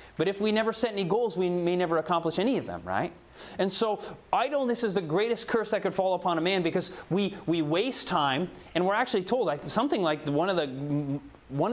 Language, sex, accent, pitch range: English, male, American, 155-205 Hz